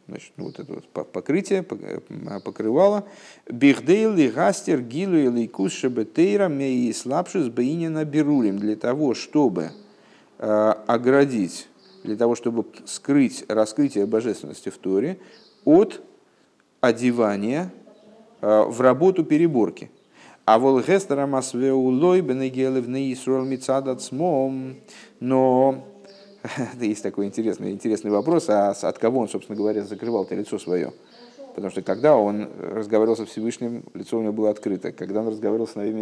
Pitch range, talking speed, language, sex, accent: 110-150 Hz, 100 wpm, Russian, male, native